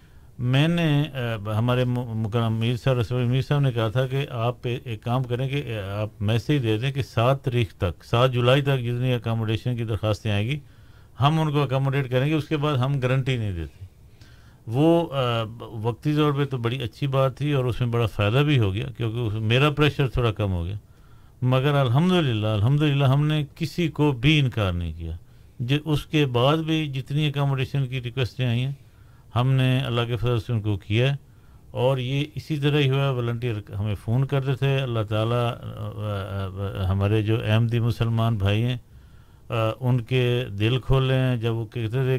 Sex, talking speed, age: male, 185 wpm, 50-69